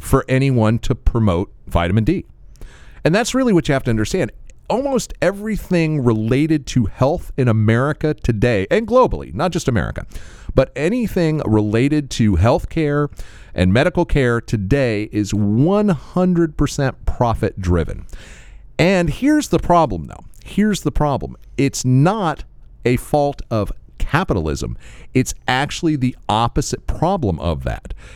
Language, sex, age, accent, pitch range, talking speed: English, male, 40-59, American, 100-145 Hz, 130 wpm